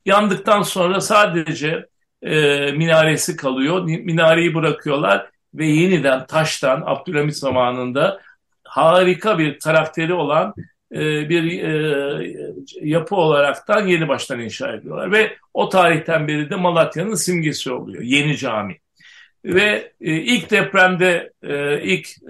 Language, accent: Turkish, native